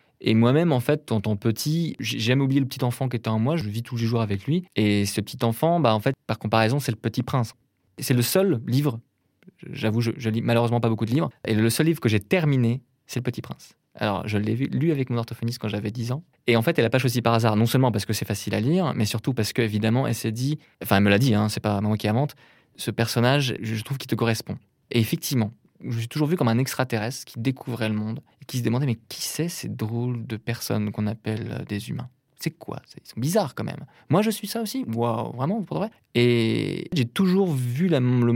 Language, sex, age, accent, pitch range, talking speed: French, male, 20-39, French, 110-145 Hz, 265 wpm